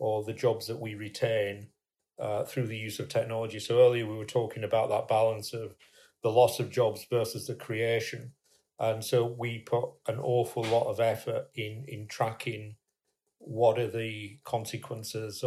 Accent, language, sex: British, English, male